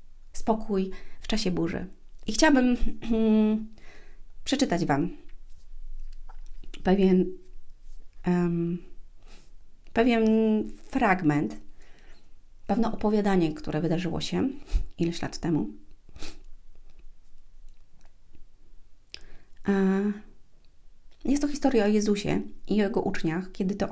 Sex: female